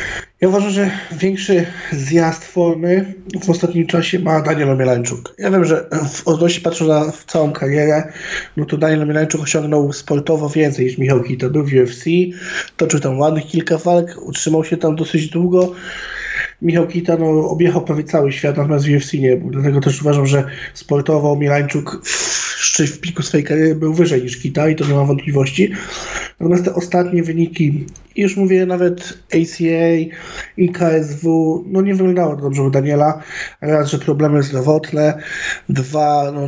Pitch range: 140-175 Hz